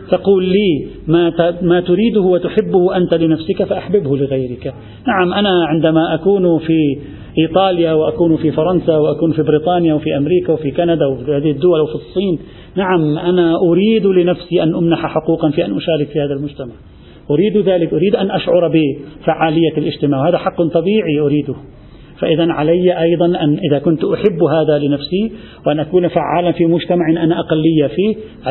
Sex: male